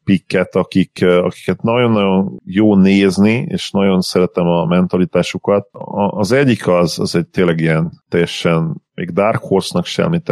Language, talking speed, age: Hungarian, 135 wpm, 40-59